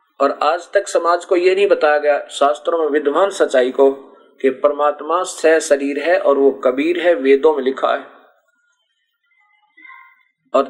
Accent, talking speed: native, 155 wpm